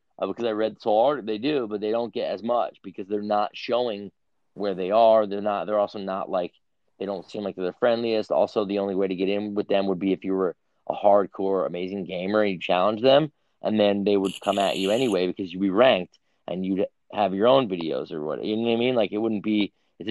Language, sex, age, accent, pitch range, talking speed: English, male, 30-49, American, 90-105 Hz, 255 wpm